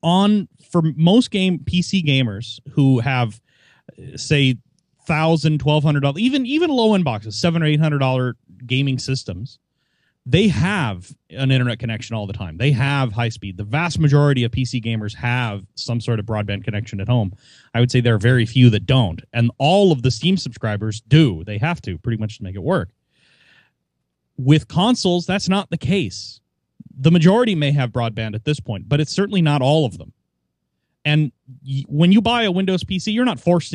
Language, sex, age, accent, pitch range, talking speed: English, male, 30-49, American, 120-160 Hz, 190 wpm